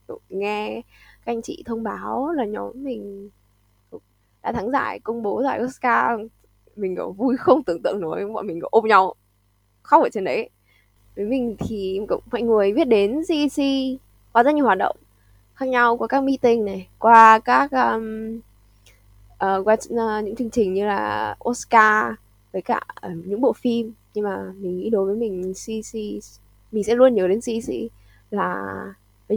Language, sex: Vietnamese, female